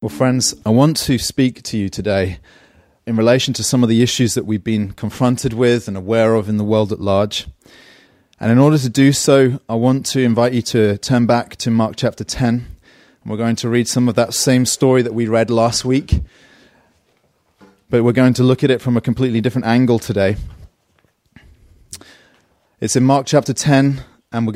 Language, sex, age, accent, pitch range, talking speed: English, male, 30-49, British, 105-130 Hz, 200 wpm